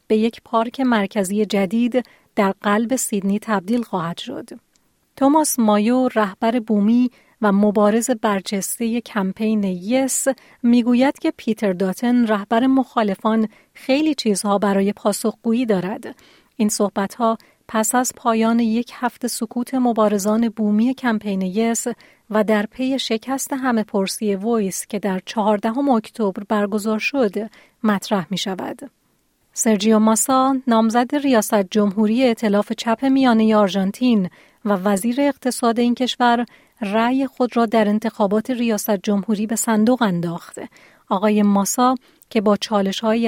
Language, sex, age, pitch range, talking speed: Persian, female, 40-59, 205-245 Hz, 125 wpm